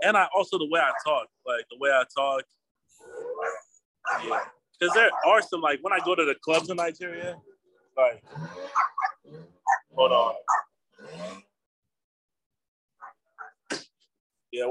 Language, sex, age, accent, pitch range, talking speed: English, male, 20-39, American, 105-150 Hz, 120 wpm